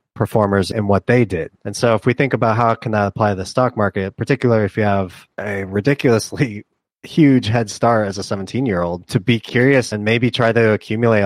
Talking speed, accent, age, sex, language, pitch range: 210 wpm, American, 30-49, male, English, 100-115 Hz